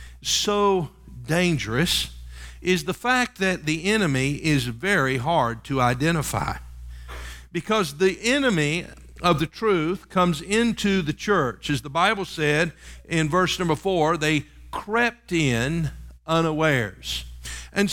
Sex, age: male, 50-69